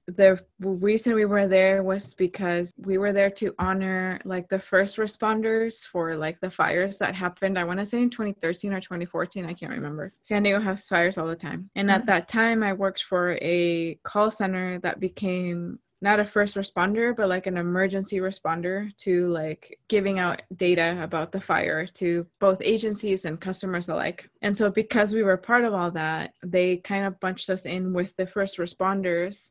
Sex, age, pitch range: female, 20-39, 180-210 Hz